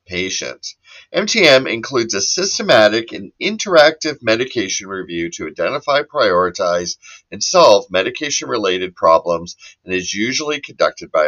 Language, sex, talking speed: English, male, 110 wpm